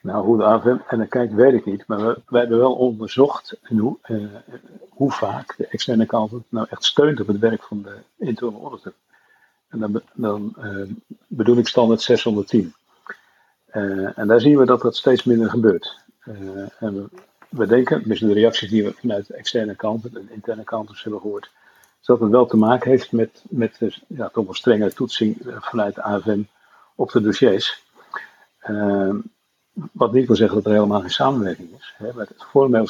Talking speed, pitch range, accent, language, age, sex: 190 wpm, 105-120 Hz, Dutch, Dutch, 50-69, male